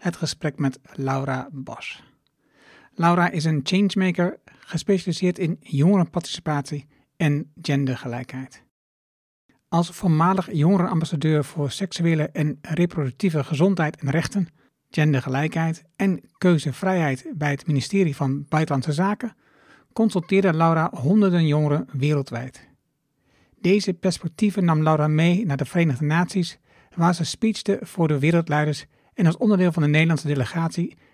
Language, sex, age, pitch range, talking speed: Dutch, male, 60-79, 145-175 Hz, 115 wpm